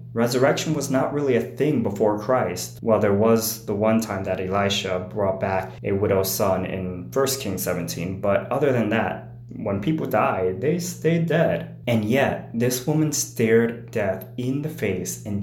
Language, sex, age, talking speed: English, male, 20-39, 175 wpm